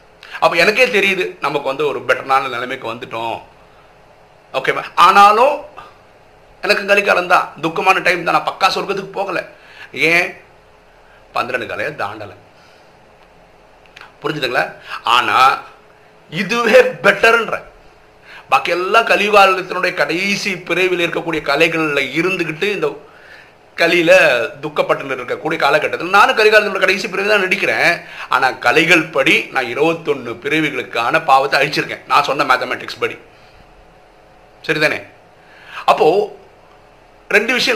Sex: male